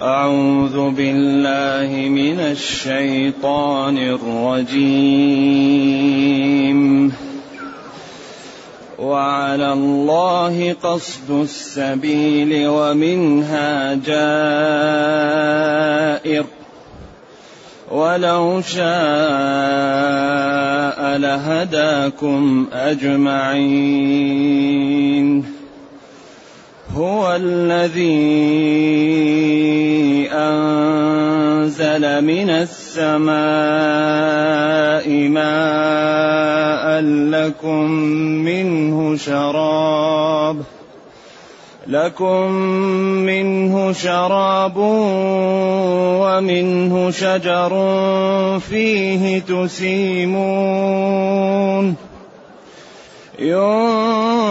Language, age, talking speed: Arabic, 30-49, 35 wpm